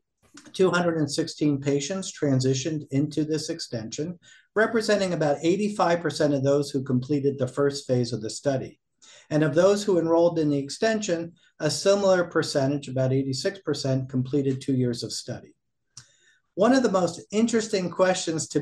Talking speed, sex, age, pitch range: 140 wpm, male, 50-69, 135-175 Hz